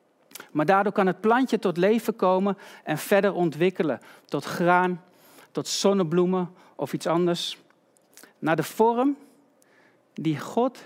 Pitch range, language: 155-200 Hz, Dutch